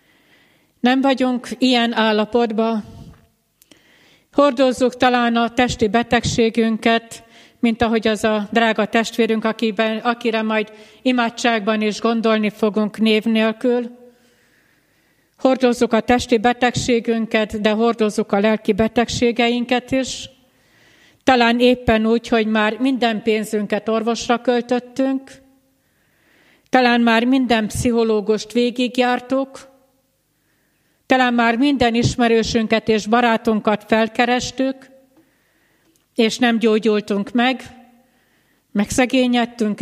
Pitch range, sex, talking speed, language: 220-250 Hz, female, 90 wpm, Hungarian